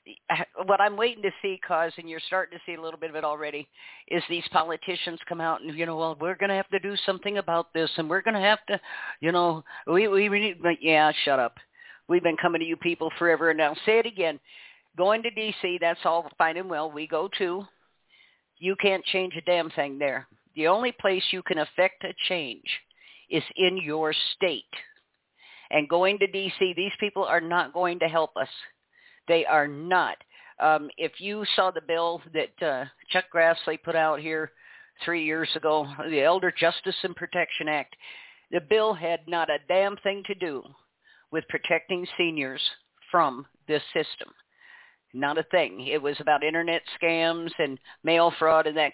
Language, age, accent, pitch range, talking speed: English, 50-69, American, 160-185 Hz, 190 wpm